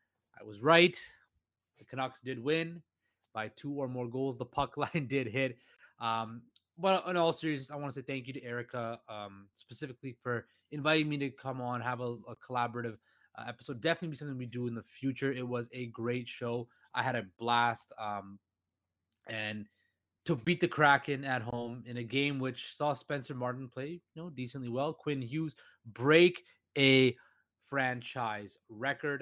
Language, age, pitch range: English, 20-39, 115-145 Hz